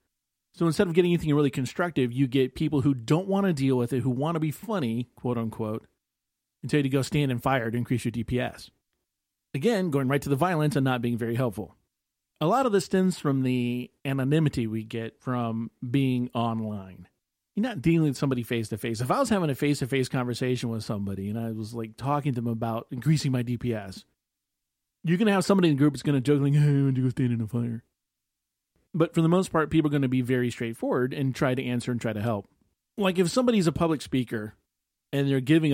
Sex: male